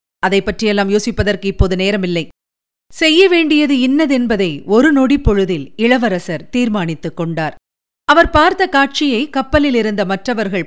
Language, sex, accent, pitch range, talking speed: Tamil, female, native, 195-275 Hz, 95 wpm